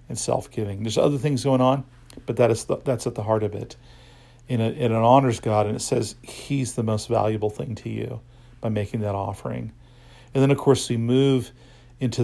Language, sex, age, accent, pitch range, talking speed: English, male, 50-69, American, 110-125 Hz, 195 wpm